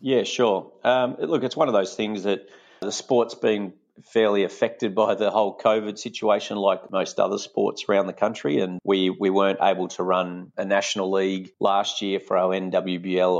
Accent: Australian